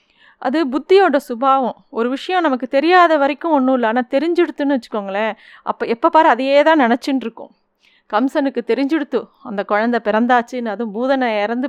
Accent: native